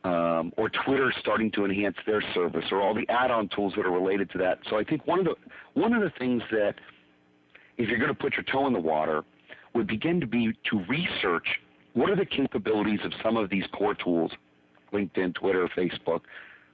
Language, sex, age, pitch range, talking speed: English, male, 40-59, 85-115 Hz, 200 wpm